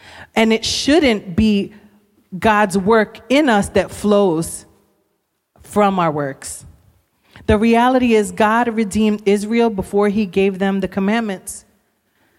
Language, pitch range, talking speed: English, 185-220 Hz, 120 wpm